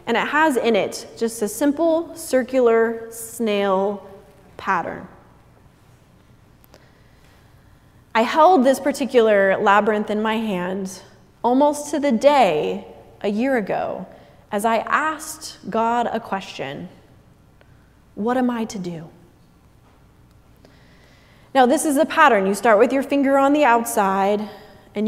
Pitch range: 195-265 Hz